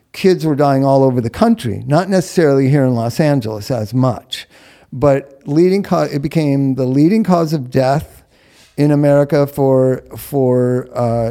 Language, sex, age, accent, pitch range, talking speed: English, male, 50-69, American, 125-145 Hz, 165 wpm